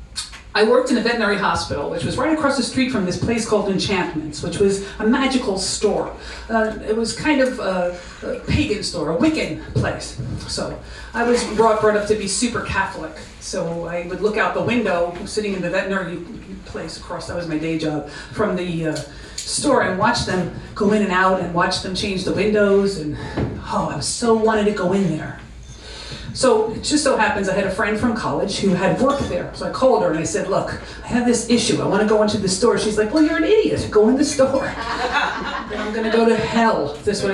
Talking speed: 225 wpm